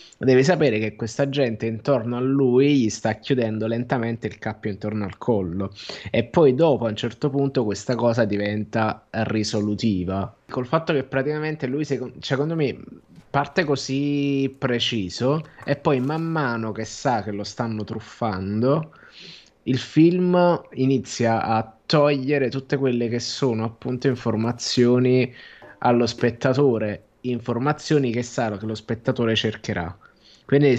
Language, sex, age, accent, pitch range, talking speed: Italian, male, 20-39, native, 110-135 Hz, 140 wpm